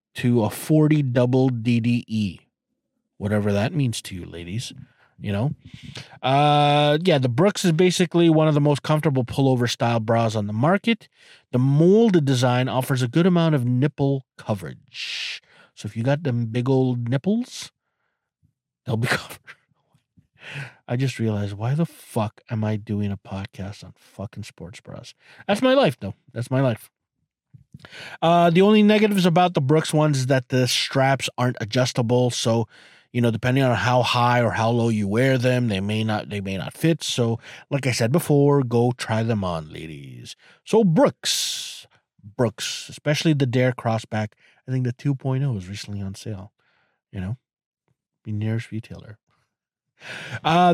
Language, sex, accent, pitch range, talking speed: English, male, American, 110-150 Hz, 165 wpm